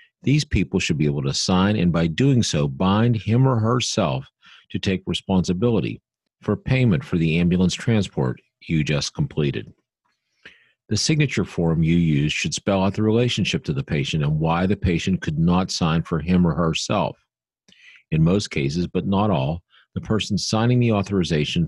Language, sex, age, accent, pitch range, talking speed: English, male, 40-59, American, 80-110 Hz, 170 wpm